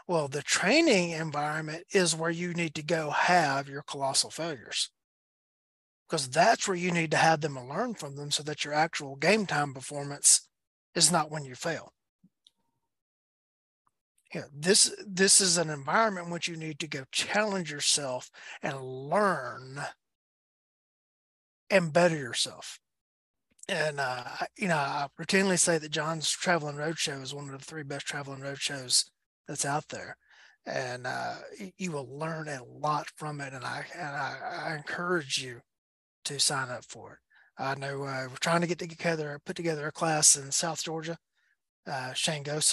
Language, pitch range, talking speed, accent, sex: English, 145-175 Hz, 160 wpm, American, male